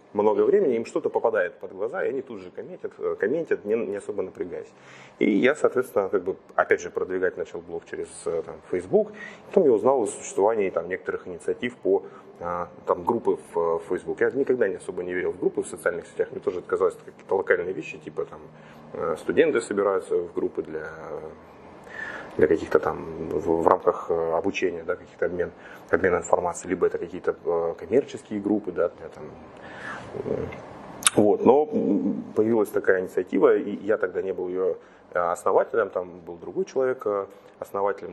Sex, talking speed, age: male, 155 wpm, 30-49